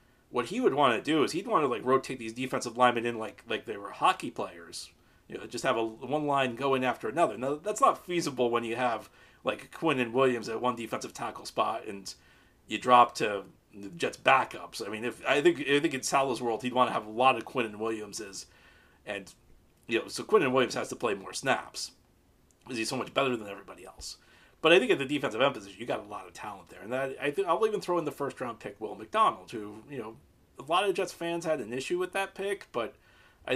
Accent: American